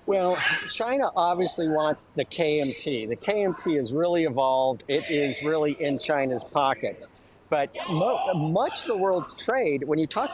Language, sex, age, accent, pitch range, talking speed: English, male, 50-69, American, 150-215 Hz, 155 wpm